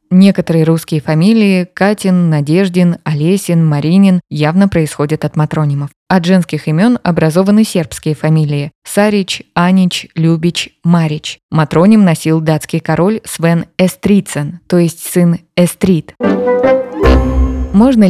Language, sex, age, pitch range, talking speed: Russian, female, 20-39, 155-195 Hz, 105 wpm